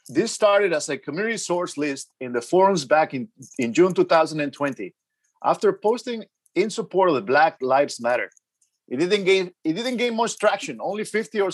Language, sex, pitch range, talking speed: English, male, 145-195 Hz, 180 wpm